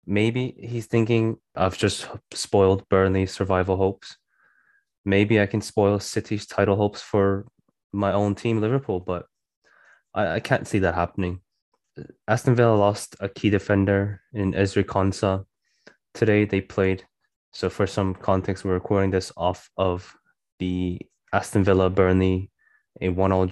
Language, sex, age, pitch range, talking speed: English, male, 10-29, 95-110 Hz, 135 wpm